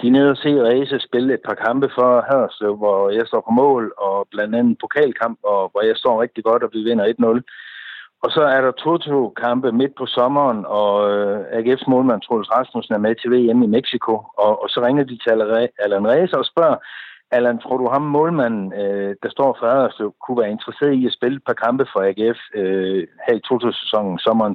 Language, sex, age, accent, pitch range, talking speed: Danish, male, 60-79, native, 105-135 Hz, 210 wpm